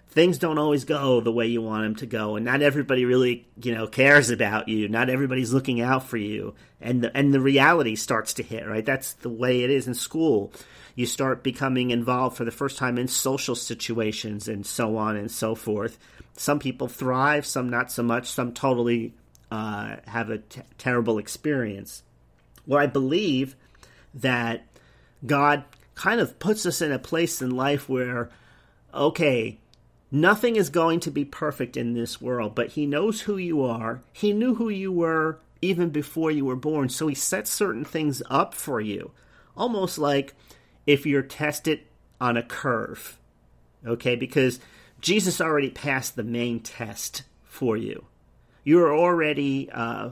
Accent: American